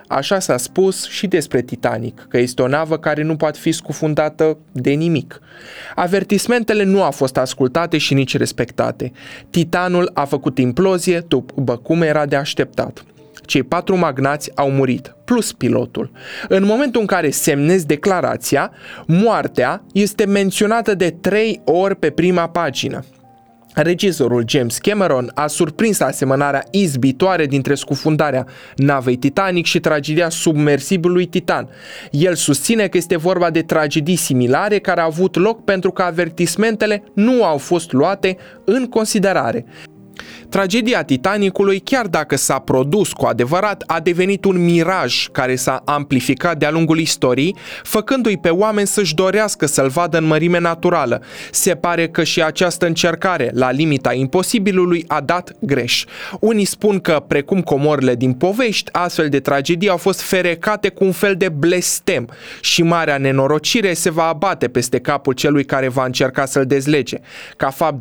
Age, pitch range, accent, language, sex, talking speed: 20-39, 145-190 Hz, native, Romanian, male, 145 wpm